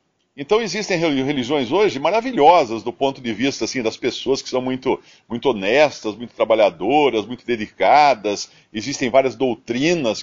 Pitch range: 125-200 Hz